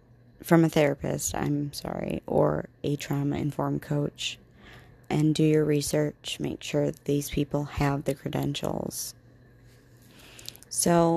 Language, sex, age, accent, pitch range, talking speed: English, female, 30-49, American, 125-155 Hz, 115 wpm